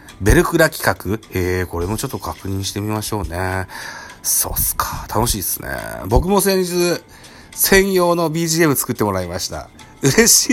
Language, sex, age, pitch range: Japanese, male, 40-59, 95-140 Hz